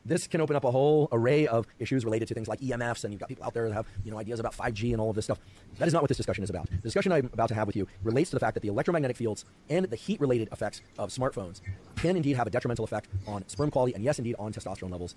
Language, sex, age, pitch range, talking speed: English, male, 30-49, 100-130 Hz, 300 wpm